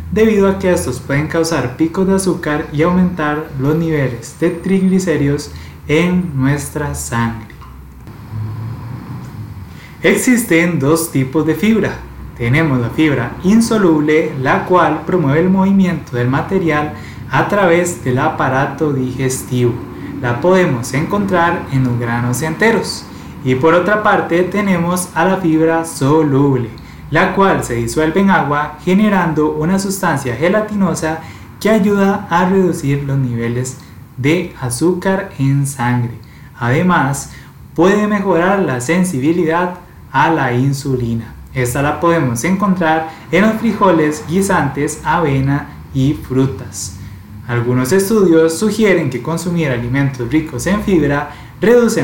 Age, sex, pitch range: 20-39, male, 130-175 Hz